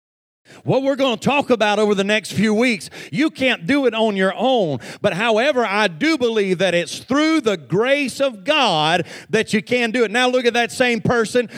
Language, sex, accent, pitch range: English, male, American, 185-255 Hz